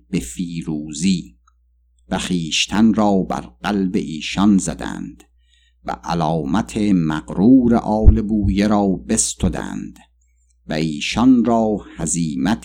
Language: Persian